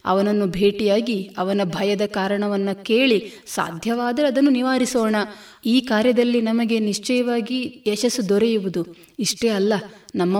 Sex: female